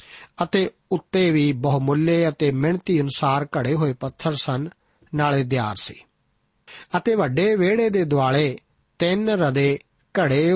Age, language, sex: 50-69, Punjabi, male